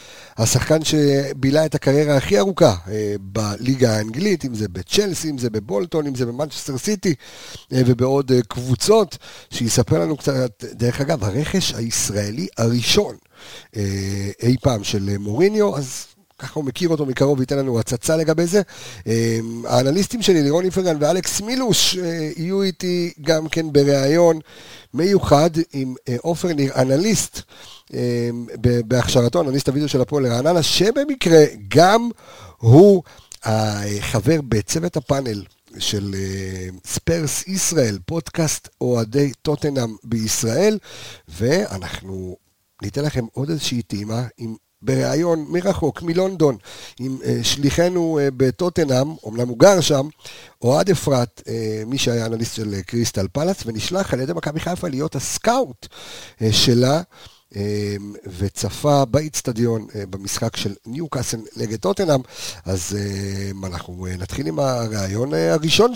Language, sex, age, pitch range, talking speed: Hebrew, male, 50-69, 110-160 Hz, 115 wpm